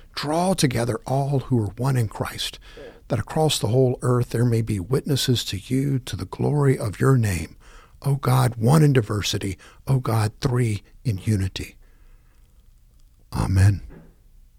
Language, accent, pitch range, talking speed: English, American, 100-130 Hz, 150 wpm